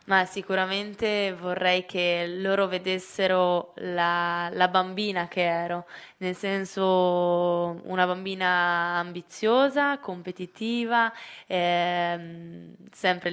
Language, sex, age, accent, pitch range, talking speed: Italian, female, 20-39, native, 175-195 Hz, 85 wpm